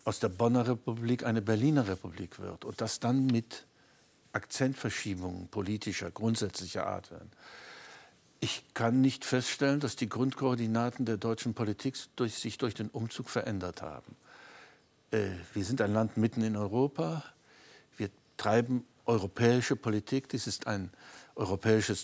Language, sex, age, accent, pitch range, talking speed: German, male, 60-79, German, 105-125 Hz, 130 wpm